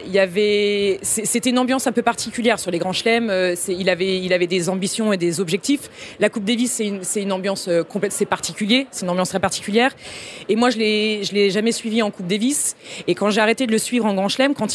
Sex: female